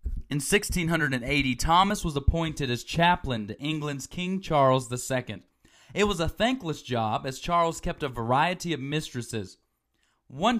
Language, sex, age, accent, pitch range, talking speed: English, male, 30-49, American, 125-175 Hz, 140 wpm